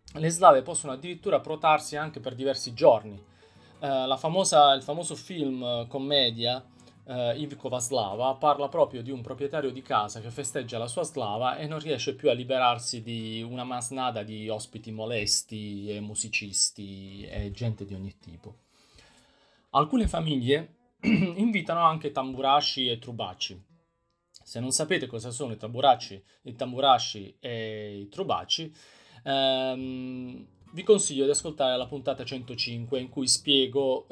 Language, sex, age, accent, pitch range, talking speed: Italian, male, 30-49, native, 115-145 Hz, 135 wpm